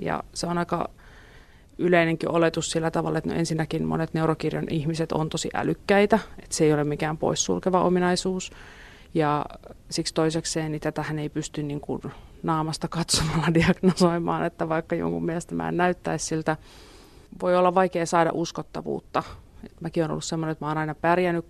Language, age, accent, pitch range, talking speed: Finnish, 30-49, native, 150-175 Hz, 160 wpm